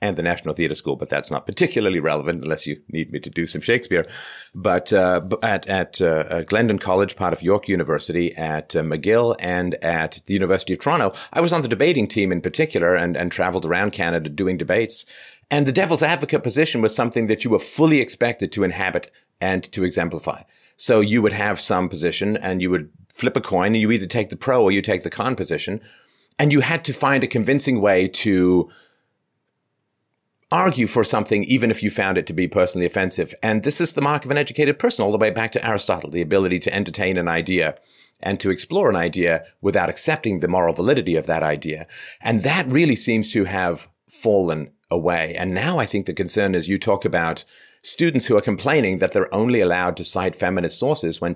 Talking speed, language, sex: 210 wpm, English, male